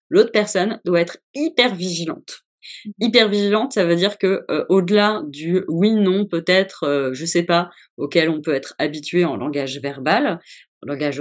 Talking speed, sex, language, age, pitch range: 175 wpm, female, French, 20-39, 165-210 Hz